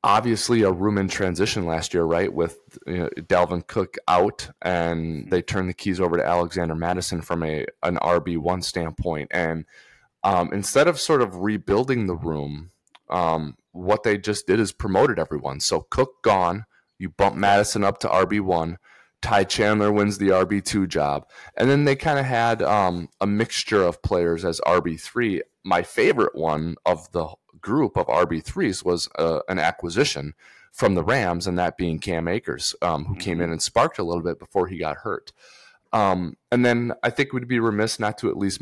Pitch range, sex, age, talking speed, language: 85-105 Hz, male, 20-39, 190 wpm, English